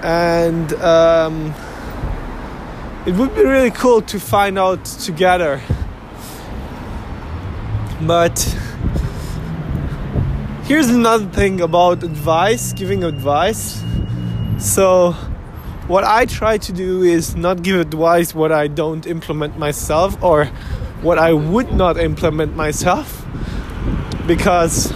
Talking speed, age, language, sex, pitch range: 100 wpm, 20-39, English, male, 145-195 Hz